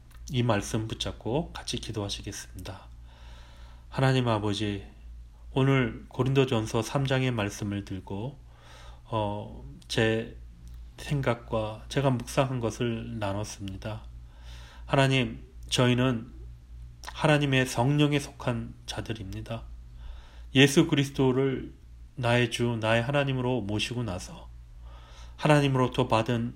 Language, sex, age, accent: Korean, male, 30-49, native